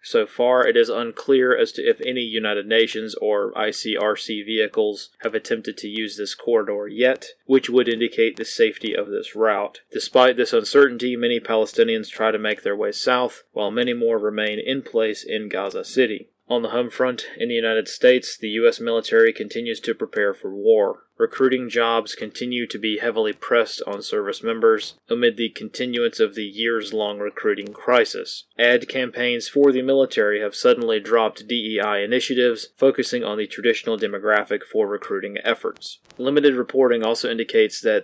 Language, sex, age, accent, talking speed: English, male, 30-49, American, 165 wpm